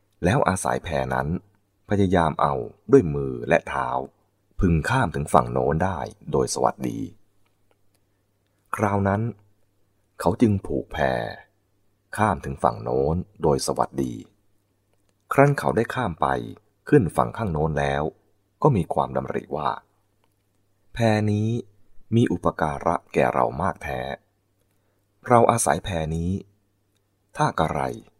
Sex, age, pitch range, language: male, 20-39, 85-105 Hz, English